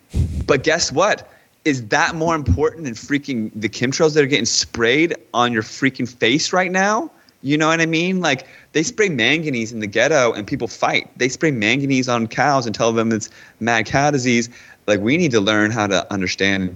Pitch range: 90-135 Hz